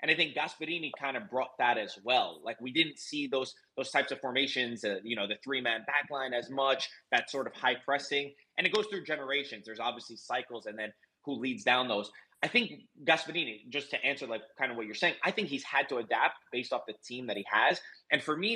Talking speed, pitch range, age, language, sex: 235 wpm, 120-145 Hz, 20-39, English, male